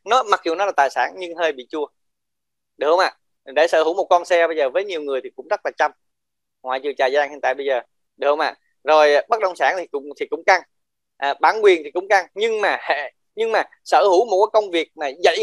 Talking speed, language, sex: 275 wpm, Vietnamese, male